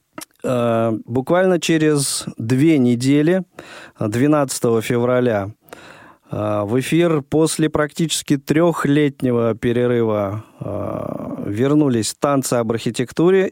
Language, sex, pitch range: Russian, male, 115-150 Hz